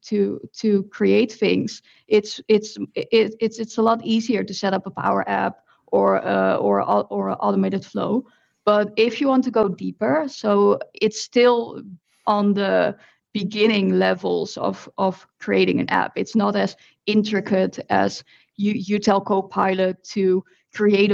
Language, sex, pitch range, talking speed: English, female, 195-225 Hz, 150 wpm